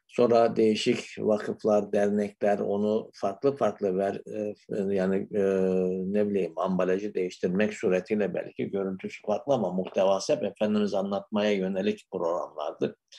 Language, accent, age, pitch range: Turkish, native, 60-79, 95-115 Hz